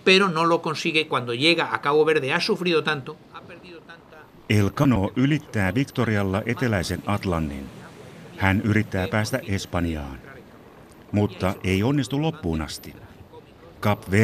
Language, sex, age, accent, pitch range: Finnish, male, 60-79, native, 95-120 Hz